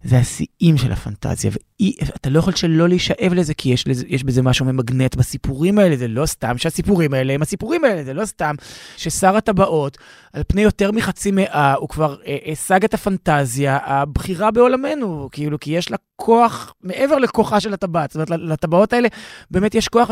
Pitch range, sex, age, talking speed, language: 145-205 Hz, male, 20-39, 180 wpm, Hebrew